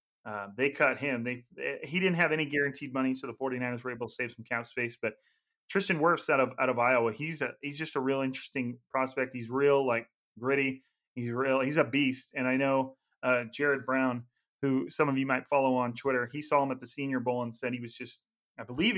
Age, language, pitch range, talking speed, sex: 30-49, English, 120-140 Hz, 235 wpm, male